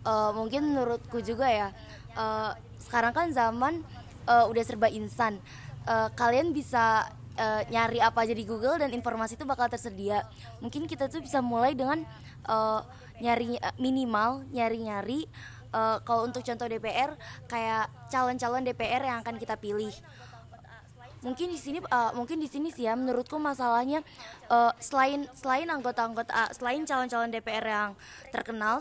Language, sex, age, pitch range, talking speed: Indonesian, female, 20-39, 225-265 Hz, 150 wpm